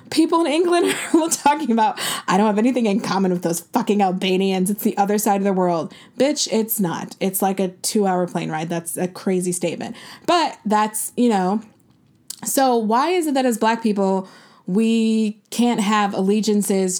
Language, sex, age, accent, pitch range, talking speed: English, female, 20-39, American, 190-250 Hz, 185 wpm